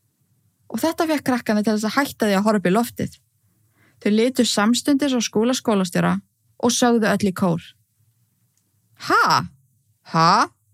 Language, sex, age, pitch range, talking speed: English, female, 20-39, 130-220 Hz, 145 wpm